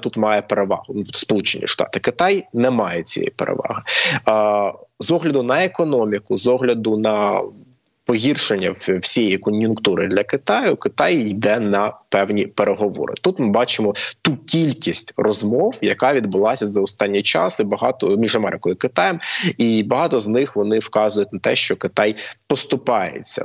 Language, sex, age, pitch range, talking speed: Ukrainian, male, 20-39, 100-125 Hz, 140 wpm